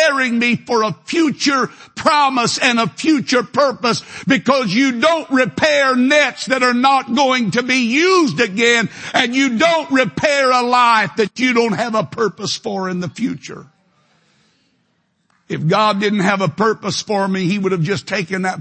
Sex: male